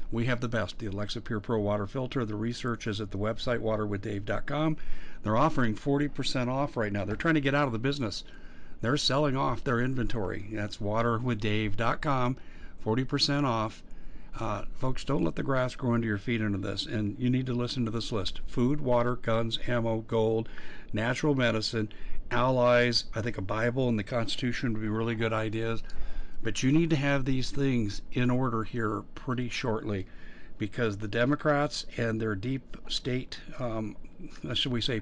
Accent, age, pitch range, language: American, 50-69, 105-125 Hz, English